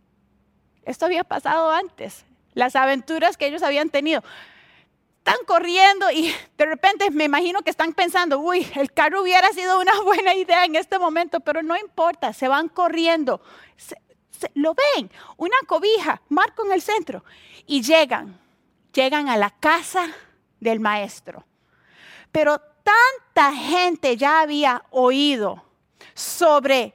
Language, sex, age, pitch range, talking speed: Spanish, female, 30-49, 240-350 Hz, 135 wpm